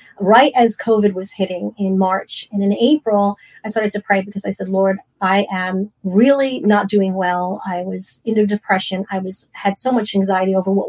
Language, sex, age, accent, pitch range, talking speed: English, female, 30-49, American, 190-215 Hz, 200 wpm